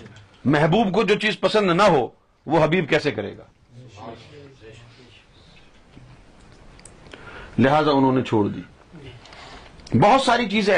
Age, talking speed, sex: 50-69, 110 wpm, male